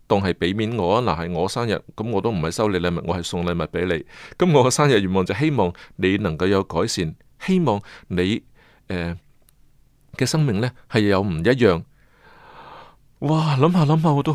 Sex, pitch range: male, 95-140 Hz